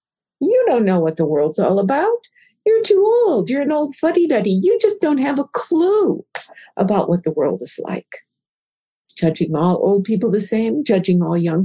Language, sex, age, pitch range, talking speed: English, female, 60-79, 195-320 Hz, 185 wpm